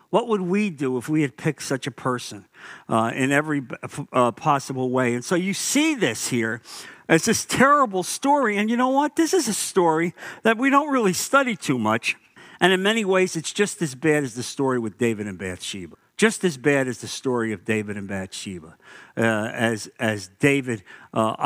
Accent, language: American, English